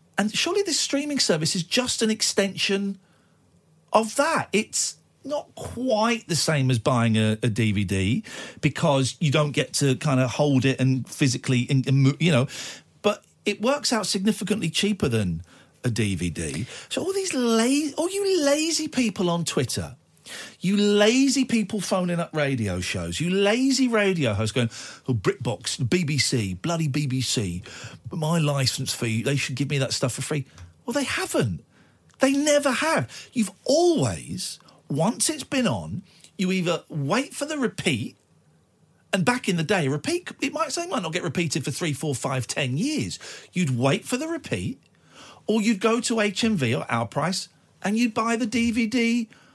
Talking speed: 170 wpm